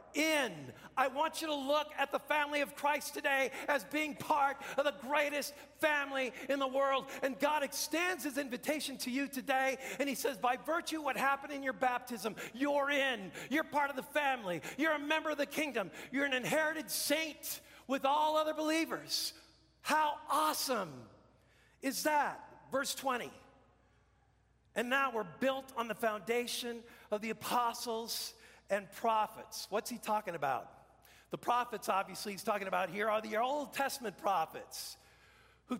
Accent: American